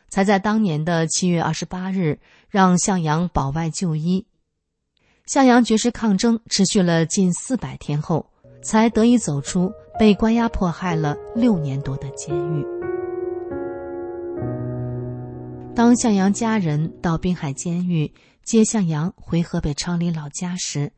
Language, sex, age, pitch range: English, female, 30-49, 155-220 Hz